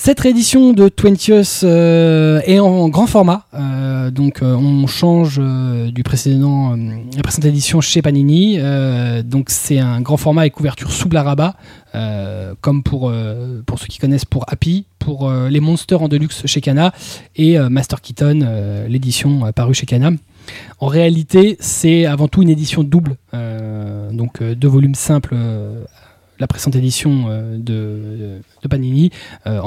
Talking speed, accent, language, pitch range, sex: 170 wpm, French, French, 120-150 Hz, male